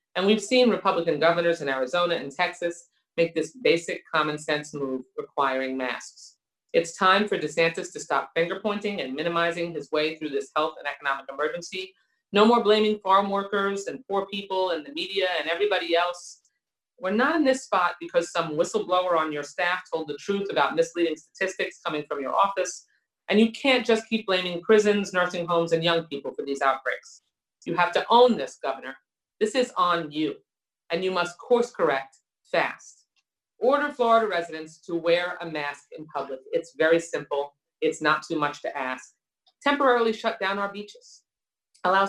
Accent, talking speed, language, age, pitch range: American, 180 wpm, English, 40-59, 155-205 Hz